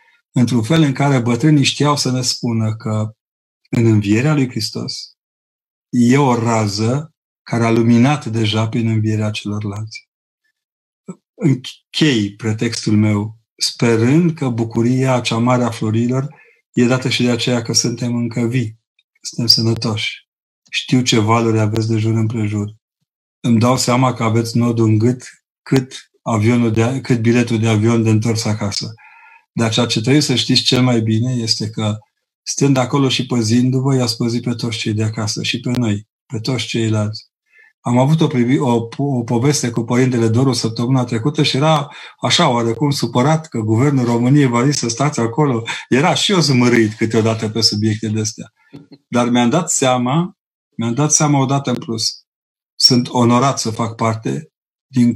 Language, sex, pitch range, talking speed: Romanian, male, 115-135 Hz, 160 wpm